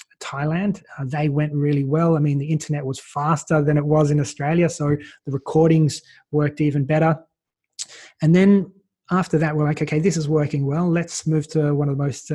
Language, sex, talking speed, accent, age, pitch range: English, male, 200 wpm, Australian, 20-39, 140-155 Hz